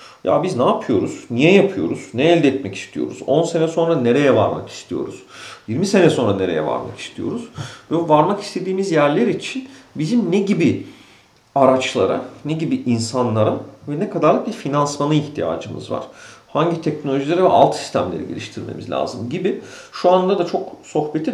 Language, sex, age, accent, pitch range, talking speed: Turkish, male, 40-59, native, 140-210 Hz, 150 wpm